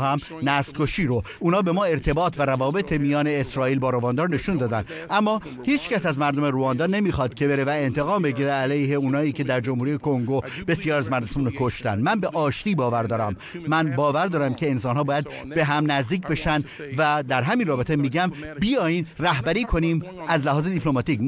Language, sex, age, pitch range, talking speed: Persian, male, 50-69, 135-170 Hz, 185 wpm